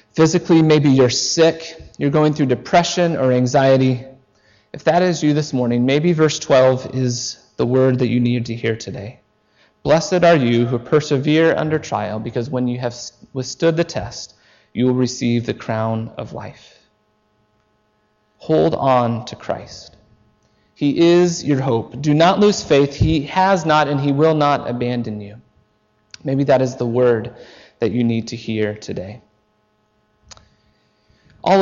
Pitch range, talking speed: 110-160 Hz, 155 wpm